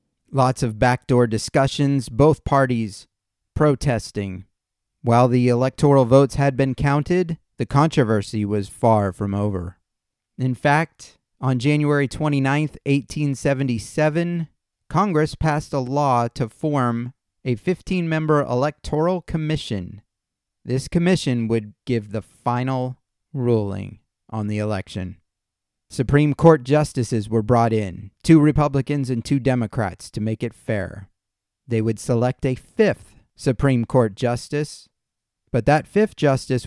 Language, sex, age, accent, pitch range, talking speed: English, male, 30-49, American, 110-140 Hz, 120 wpm